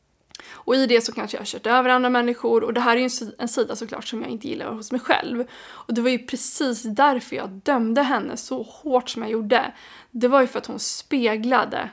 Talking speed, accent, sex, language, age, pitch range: 235 wpm, native, female, Swedish, 20-39, 230-275 Hz